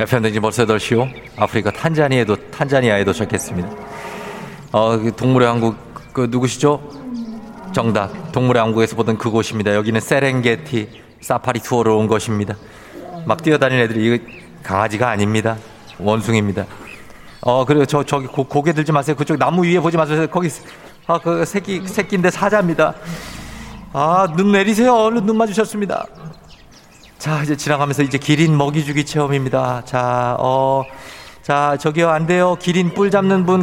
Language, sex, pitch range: Korean, male, 115-170 Hz